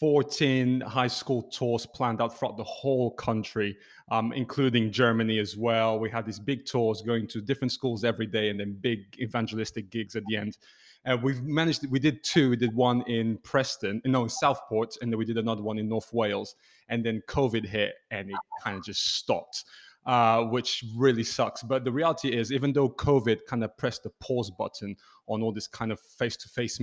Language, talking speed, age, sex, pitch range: English, 205 wpm, 20-39, male, 110-130 Hz